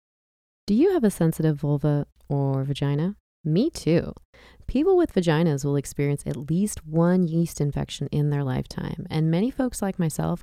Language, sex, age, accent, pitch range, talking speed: English, female, 20-39, American, 145-180 Hz, 160 wpm